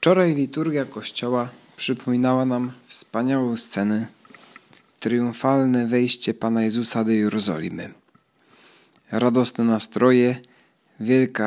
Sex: male